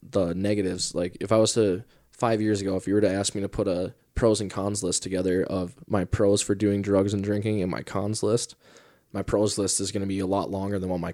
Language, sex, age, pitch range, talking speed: English, male, 20-39, 95-110 Hz, 265 wpm